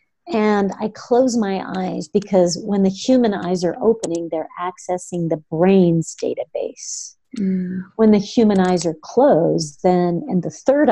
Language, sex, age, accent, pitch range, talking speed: English, female, 40-59, American, 175-205 Hz, 150 wpm